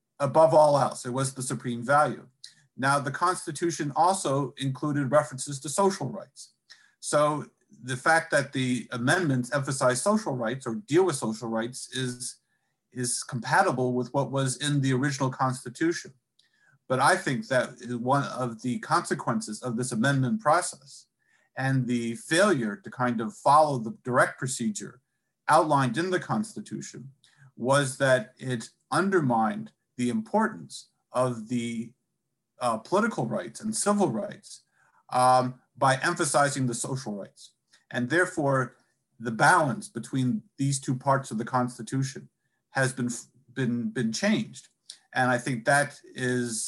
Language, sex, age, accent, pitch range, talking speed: English, male, 50-69, American, 120-145 Hz, 140 wpm